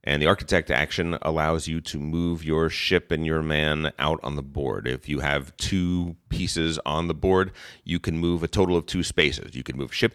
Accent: American